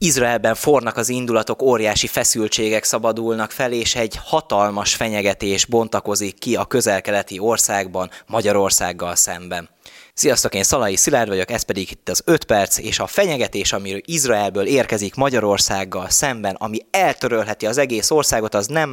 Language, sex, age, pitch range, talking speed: Hungarian, male, 20-39, 95-120 Hz, 145 wpm